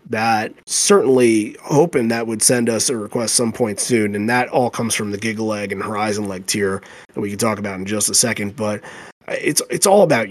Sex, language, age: male, English, 30-49